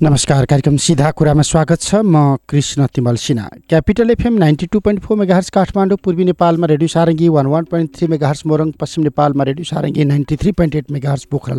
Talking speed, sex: 170 wpm, male